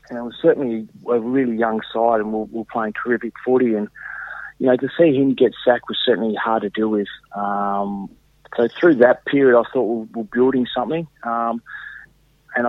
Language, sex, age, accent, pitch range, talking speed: English, male, 30-49, Australian, 100-115 Hz, 195 wpm